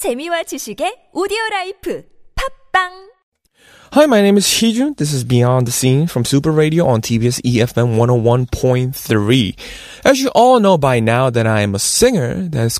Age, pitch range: 20-39, 110-180 Hz